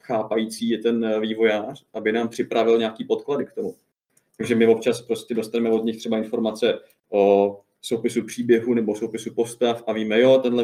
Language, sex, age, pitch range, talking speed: Czech, male, 20-39, 110-125 Hz, 165 wpm